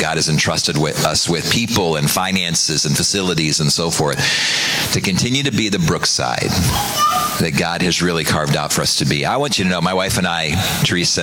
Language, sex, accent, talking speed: English, male, American, 215 wpm